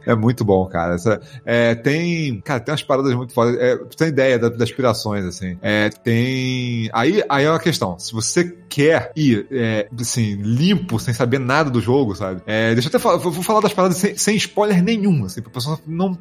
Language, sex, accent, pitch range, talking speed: Portuguese, male, Brazilian, 120-155 Hz, 205 wpm